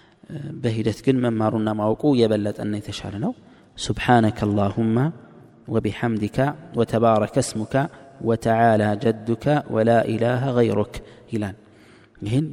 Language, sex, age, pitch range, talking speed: Amharic, male, 20-39, 105-125 Hz, 80 wpm